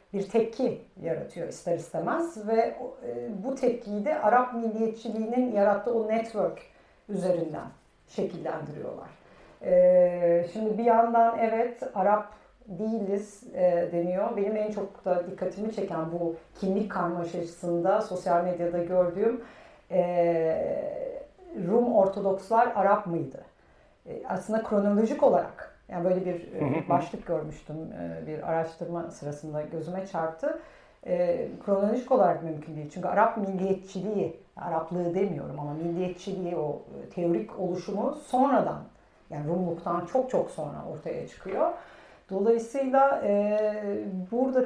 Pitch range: 175-230 Hz